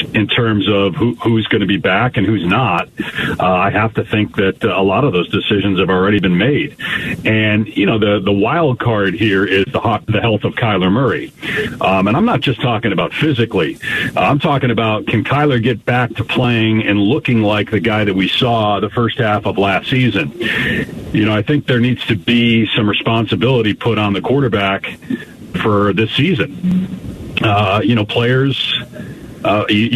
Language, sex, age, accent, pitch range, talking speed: English, male, 40-59, American, 110-130 Hz, 190 wpm